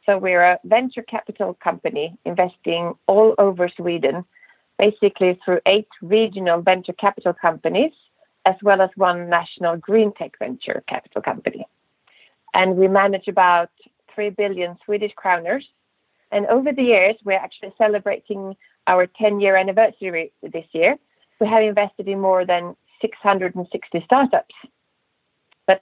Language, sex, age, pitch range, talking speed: English, female, 40-59, 175-215 Hz, 130 wpm